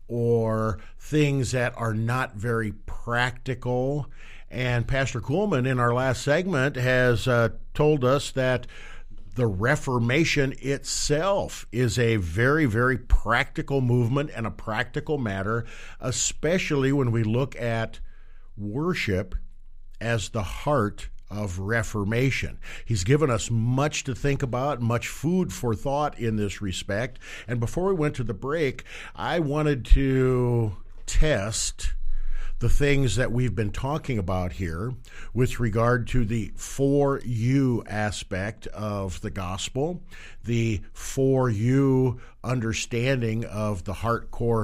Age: 50-69